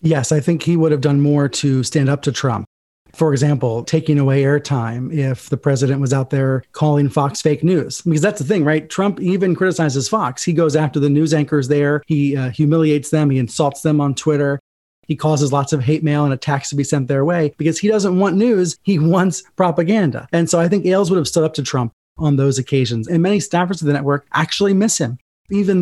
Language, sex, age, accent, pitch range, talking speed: English, male, 30-49, American, 140-180 Hz, 230 wpm